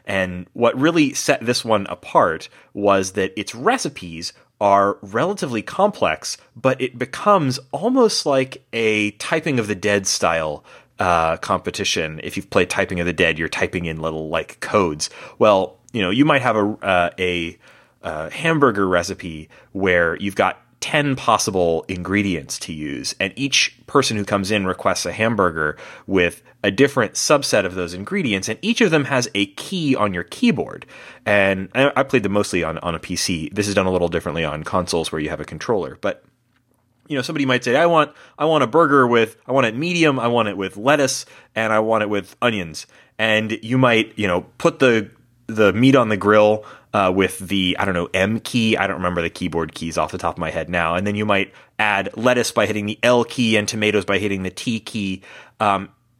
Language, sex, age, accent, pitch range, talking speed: English, male, 30-49, American, 95-125 Hz, 200 wpm